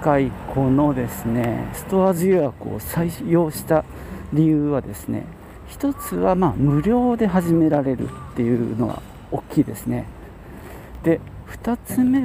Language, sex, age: Japanese, male, 40-59